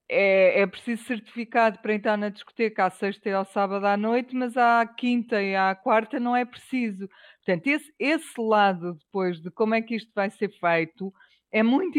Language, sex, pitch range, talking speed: Portuguese, female, 185-235 Hz, 195 wpm